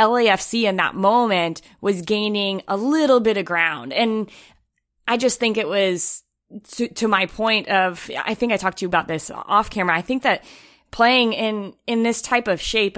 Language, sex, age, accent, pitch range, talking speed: English, female, 20-39, American, 170-215 Hz, 195 wpm